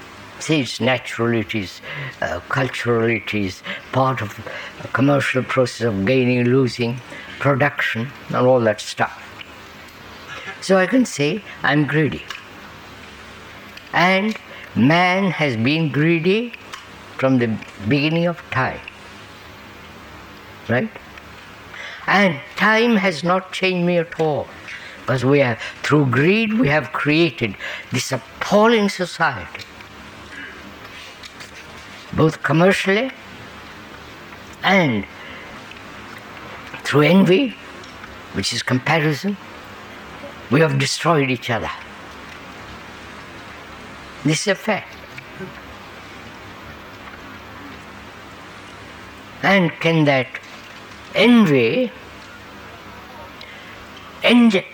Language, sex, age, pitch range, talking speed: English, female, 60-79, 105-175 Hz, 90 wpm